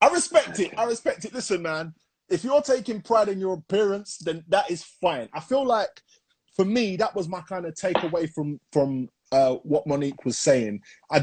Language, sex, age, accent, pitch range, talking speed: English, male, 20-39, British, 125-185 Hz, 205 wpm